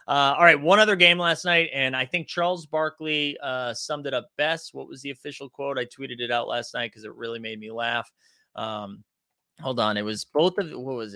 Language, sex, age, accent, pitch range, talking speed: English, male, 30-49, American, 130-180 Hz, 235 wpm